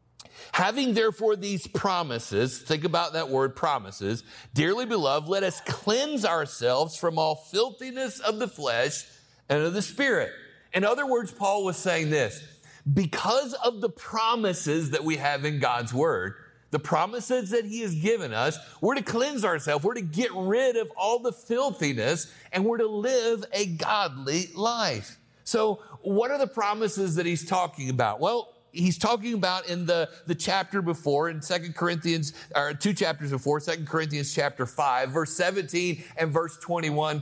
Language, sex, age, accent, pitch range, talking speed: English, male, 50-69, American, 150-205 Hz, 165 wpm